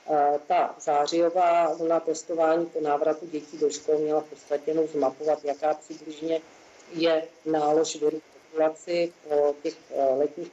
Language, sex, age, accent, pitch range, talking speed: Czech, female, 40-59, native, 150-165 Hz, 125 wpm